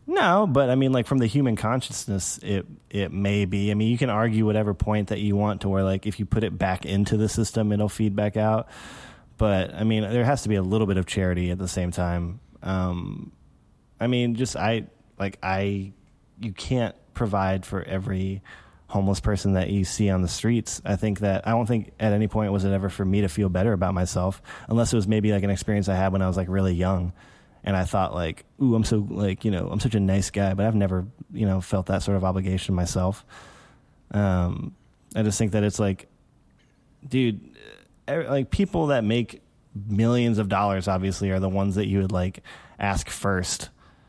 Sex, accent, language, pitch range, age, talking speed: male, American, English, 95-110 Hz, 20-39, 215 wpm